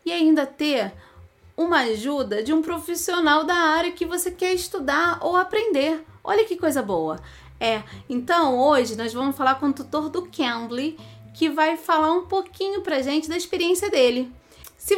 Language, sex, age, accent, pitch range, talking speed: Portuguese, female, 30-49, Brazilian, 255-340 Hz, 170 wpm